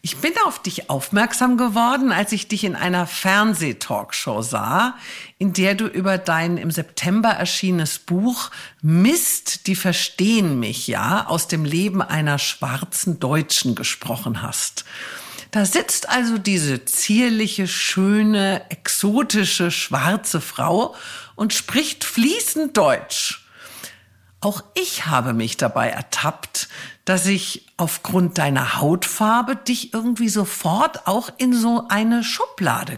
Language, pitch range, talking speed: German, 175-230 Hz, 120 wpm